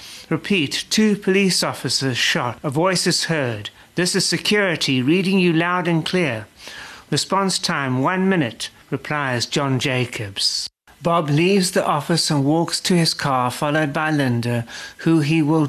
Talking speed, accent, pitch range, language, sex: 150 wpm, British, 130-165 Hz, English, male